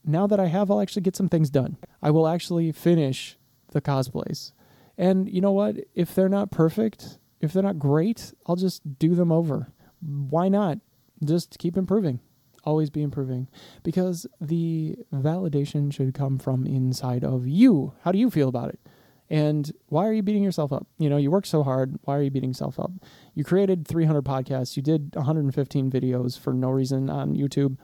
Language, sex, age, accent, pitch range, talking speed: English, male, 20-39, American, 140-180 Hz, 190 wpm